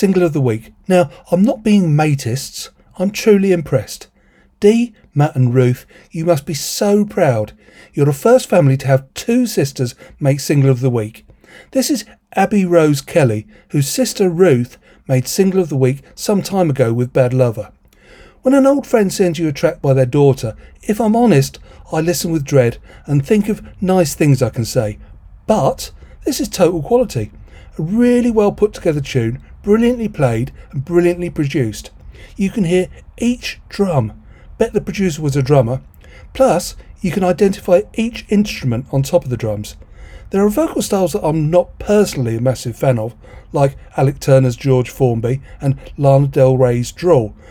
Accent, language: British, English